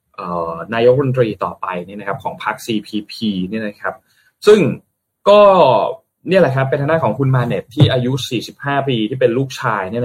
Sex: male